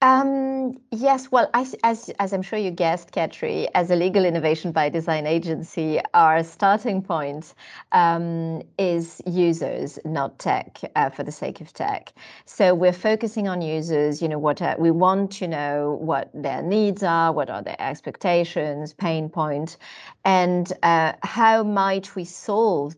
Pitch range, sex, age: 160-195 Hz, female, 30-49